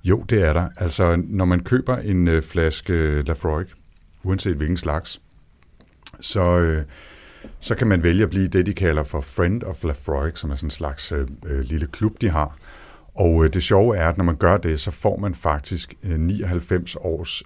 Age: 60-79